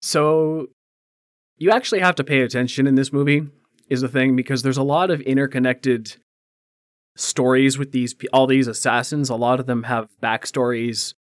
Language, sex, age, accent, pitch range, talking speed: English, male, 20-39, American, 120-135 Hz, 165 wpm